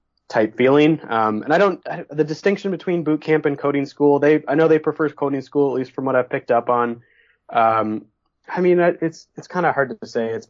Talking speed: 225 wpm